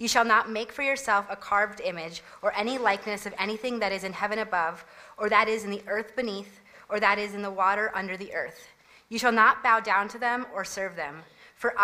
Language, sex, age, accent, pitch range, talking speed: English, female, 30-49, American, 185-225 Hz, 235 wpm